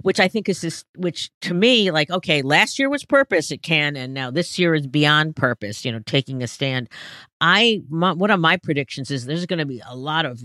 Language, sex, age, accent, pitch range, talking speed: English, female, 50-69, American, 125-155 Hz, 235 wpm